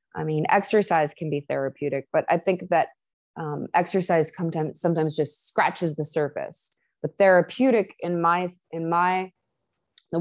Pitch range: 155-190 Hz